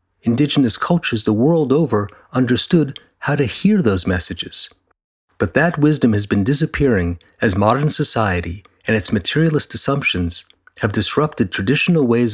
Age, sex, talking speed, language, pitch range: 40-59, male, 135 wpm, English, 100-135 Hz